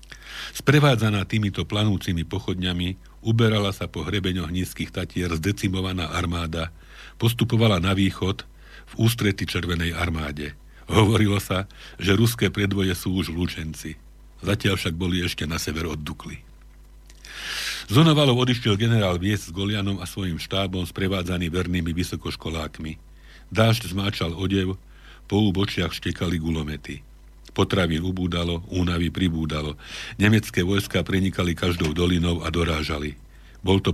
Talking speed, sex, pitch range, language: 115 wpm, male, 85-100 Hz, Slovak